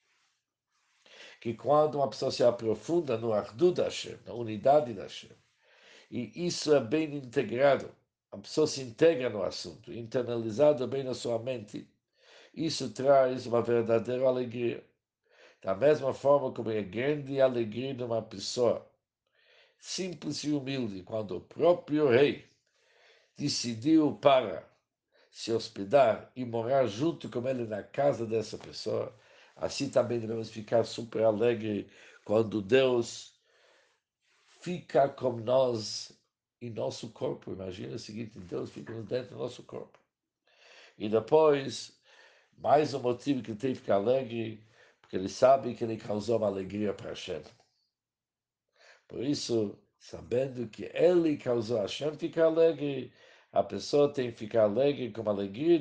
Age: 60-79